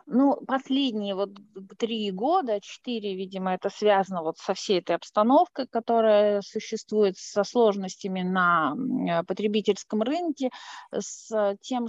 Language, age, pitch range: Russian, 20-39, 195-235 Hz